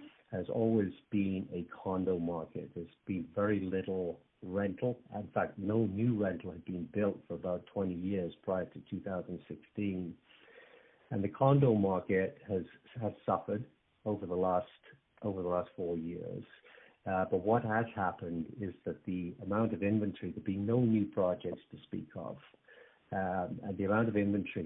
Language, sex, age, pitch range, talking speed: English, male, 60-79, 90-105 Hz, 160 wpm